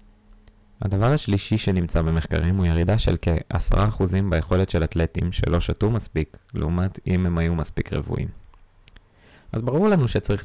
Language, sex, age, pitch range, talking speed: Hebrew, male, 20-39, 80-100 Hz, 140 wpm